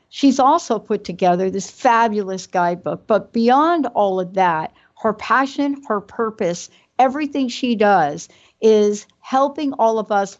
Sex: female